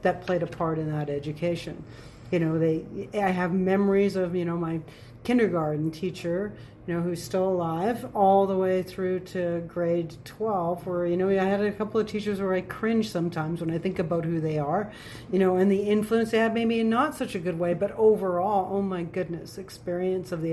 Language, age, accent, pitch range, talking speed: English, 40-59, American, 160-190 Hz, 215 wpm